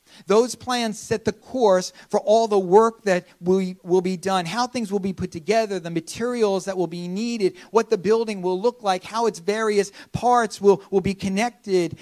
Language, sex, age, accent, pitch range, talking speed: English, male, 40-59, American, 175-215 Hz, 195 wpm